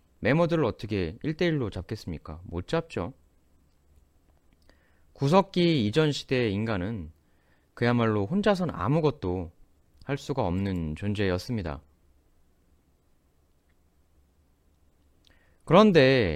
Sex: male